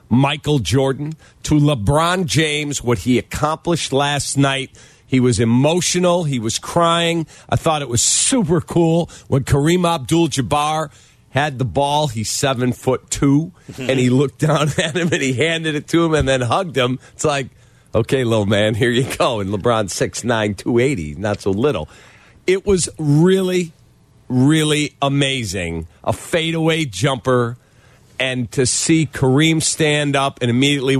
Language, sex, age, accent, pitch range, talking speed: English, male, 50-69, American, 120-155 Hz, 155 wpm